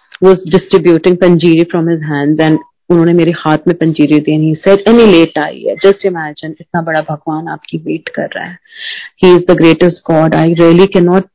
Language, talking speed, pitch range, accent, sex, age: Hindi, 150 wpm, 160-180 Hz, native, female, 30-49